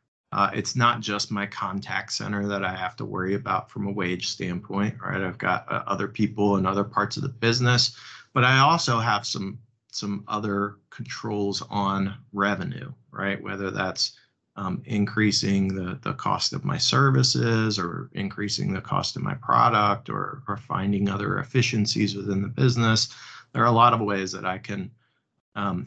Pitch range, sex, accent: 100-120 Hz, male, American